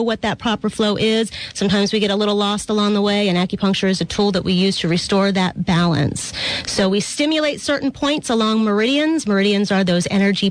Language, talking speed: English, 210 wpm